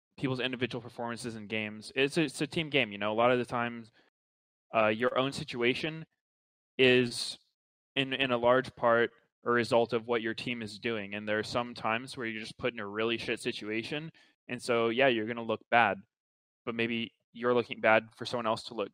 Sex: male